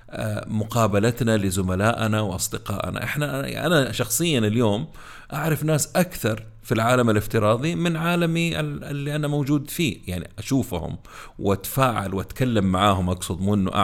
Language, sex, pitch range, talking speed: Arabic, male, 100-125 Hz, 115 wpm